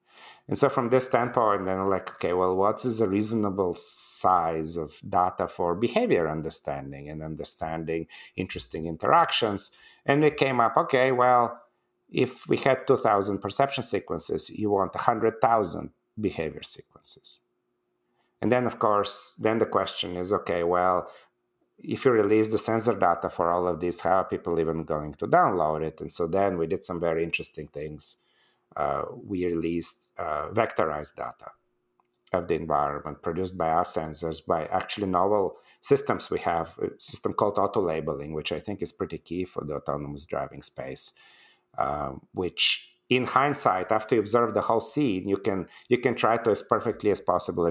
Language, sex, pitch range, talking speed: English, male, 85-115 Hz, 165 wpm